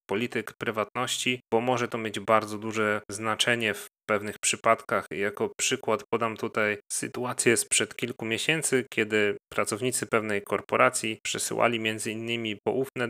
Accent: native